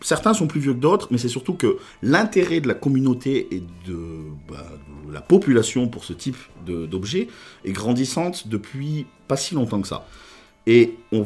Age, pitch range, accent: 40-59, 90-130 Hz, French